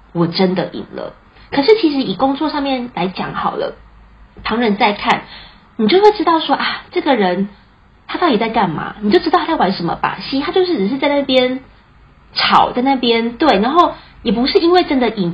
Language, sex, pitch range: Chinese, female, 190-275 Hz